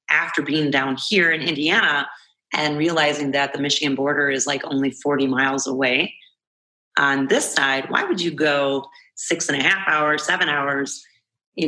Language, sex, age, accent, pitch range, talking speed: English, female, 30-49, American, 140-155 Hz, 170 wpm